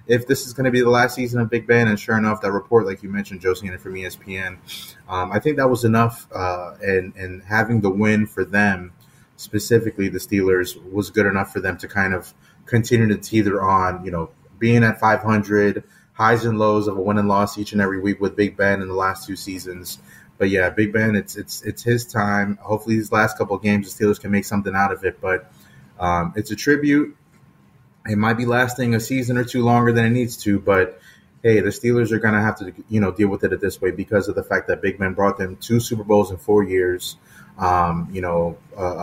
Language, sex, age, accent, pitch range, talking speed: English, male, 20-39, American, 95-115 Hz, 235 wpm